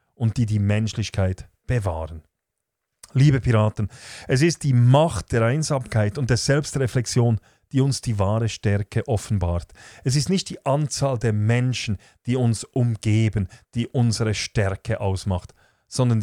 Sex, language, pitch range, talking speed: male, German, 105-135 Hz, 135 wpm